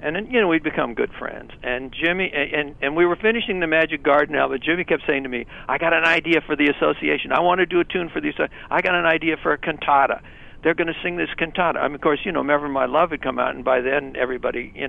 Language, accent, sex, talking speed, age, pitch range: English, American, male, 285 wpm, 60-79, 140-165 Hz